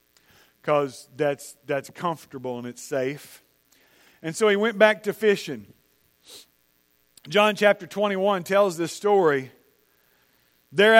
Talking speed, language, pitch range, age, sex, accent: 115 wpm, English, 165-250 Hz, 40-59, male, American